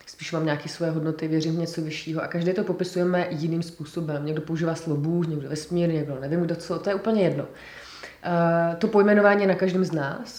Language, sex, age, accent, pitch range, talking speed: Czech, female, 30-49, native, 155-175 Hz, 200 wpm